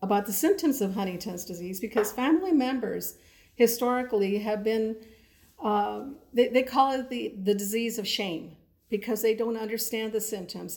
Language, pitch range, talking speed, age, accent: English, 195-230 Hz, 155 wpm, 50-69, American